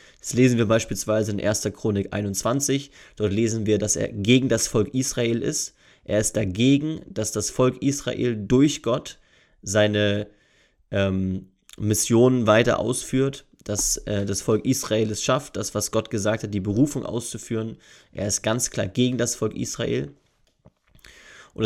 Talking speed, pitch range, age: 155 wpm, 105-125 Hz, 20-39